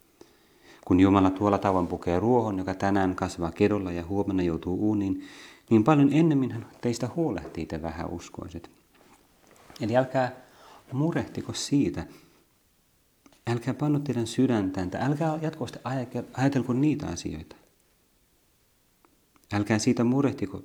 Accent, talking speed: native, 115 wpm